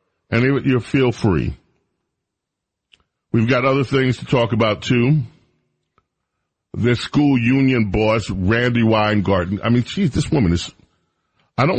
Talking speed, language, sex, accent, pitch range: 130 wpm, English, male, American, 95-130 Hz